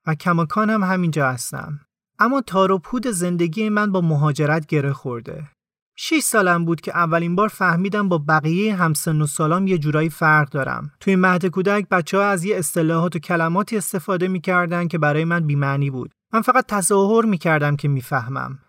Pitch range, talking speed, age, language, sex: 155-205 Hz, 175 wpm, 30-49, Persian, male